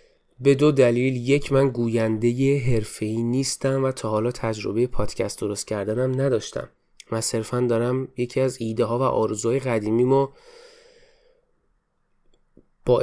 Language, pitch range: Persian, 115-145 Hz